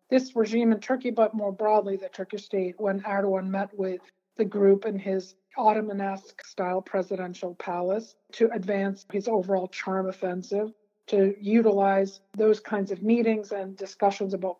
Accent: American